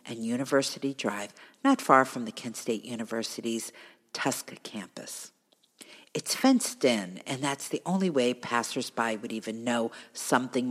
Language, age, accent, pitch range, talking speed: English, 50-69, American, 115-155 Hz, 140 wpm